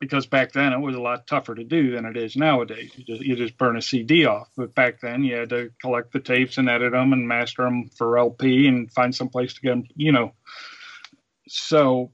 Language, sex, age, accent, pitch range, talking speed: English, male, 50-69, American, 120-135 Hz, 240 wpm